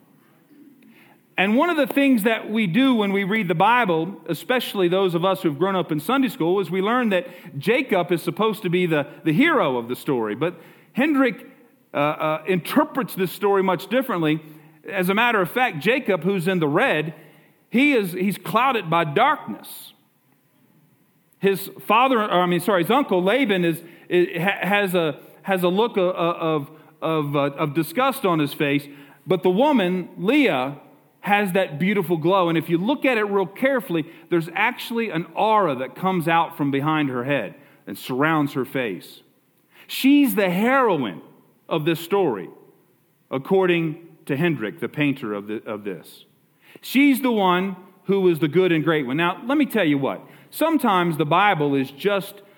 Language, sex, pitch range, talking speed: English, male, 160-215 Hz, 175 wpm